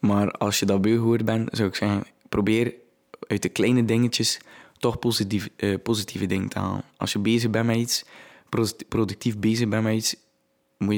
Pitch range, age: 100-110 Hz, 20-39